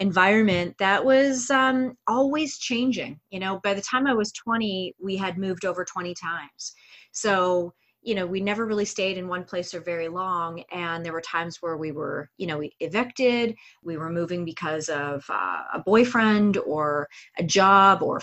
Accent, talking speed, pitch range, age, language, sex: American, 185 wpm, 175-220 Hz, 30-49, English, female